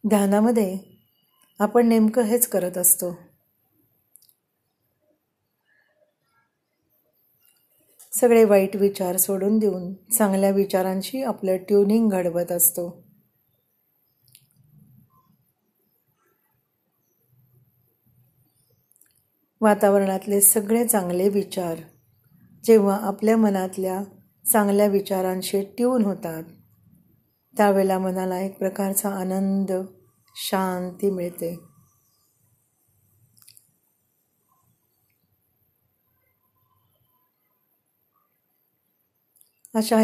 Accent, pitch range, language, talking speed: native, 165-205 Hz, Marathi, 55 wpm